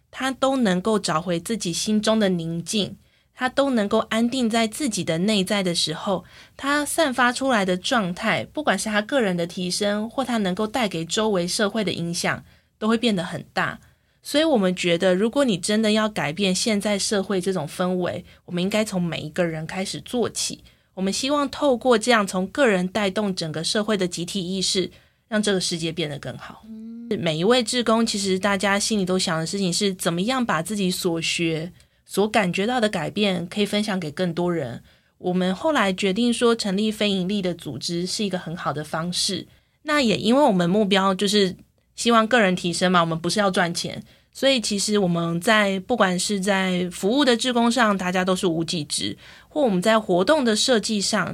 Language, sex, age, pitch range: Chinese, female, 20-39, 180-225 Hz